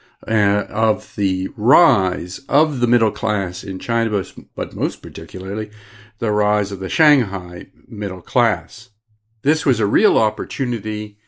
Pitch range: 100-130 Hz